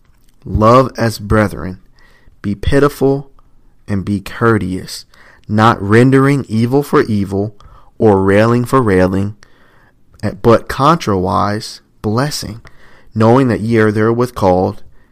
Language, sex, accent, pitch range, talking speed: English, male, American, 100-115 Hz, 105 wpm